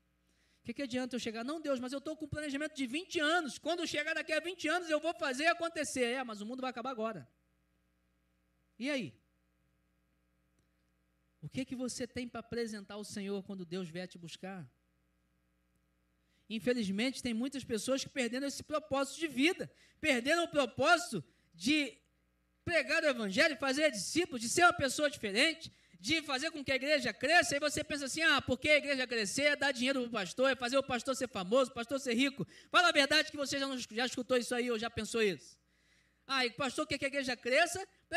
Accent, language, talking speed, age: Brazilian, Portuguese, 205 wpm, 20-39